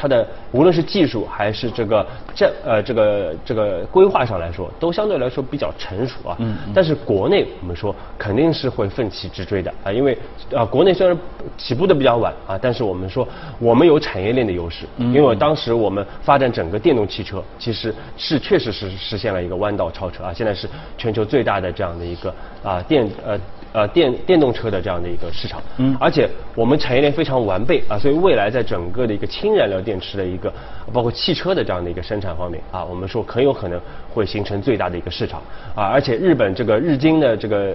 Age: 20-39